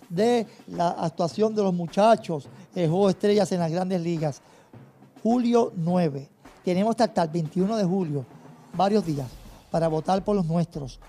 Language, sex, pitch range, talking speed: Spanish, male, 160-195 Hz, 160 wpm